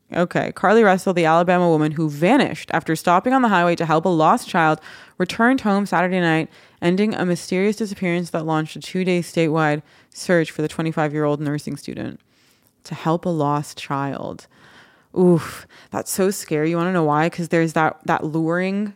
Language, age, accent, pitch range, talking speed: English, 20-39, American, 155-195 Hz, 175 wpm